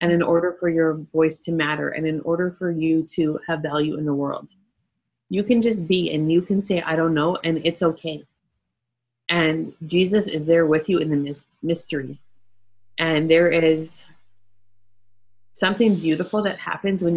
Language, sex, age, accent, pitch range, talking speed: English, female, 30-49, American, 140-170 Hz, 175 wpm